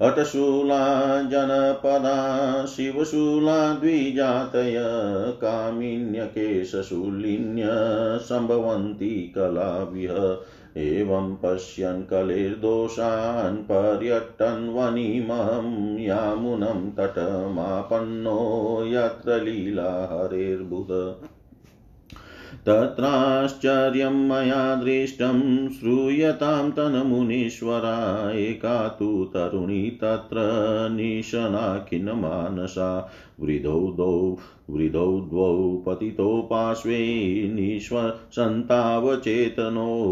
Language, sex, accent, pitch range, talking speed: Hindi, male, native, 95-125 Hz, 50 wpm